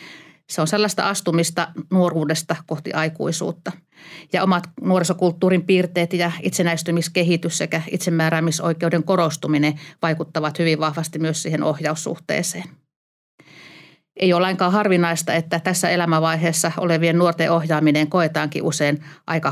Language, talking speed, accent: Finnish, 100 wpm, native